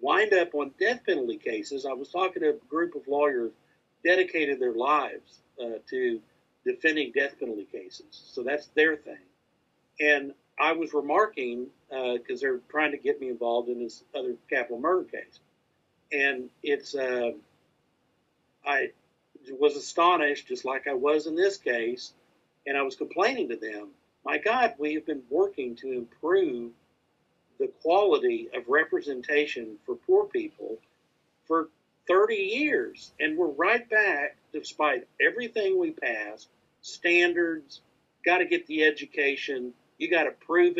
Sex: male